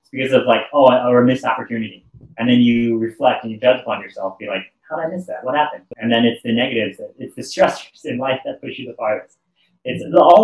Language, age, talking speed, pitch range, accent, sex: English, 30-49, 260 wpm, 115-145 Hz, American, male